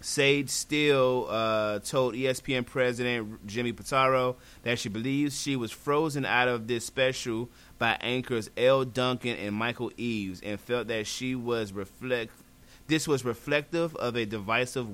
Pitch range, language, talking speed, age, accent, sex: 110-130 Hz, English, 150 wpm, 30-49, American, male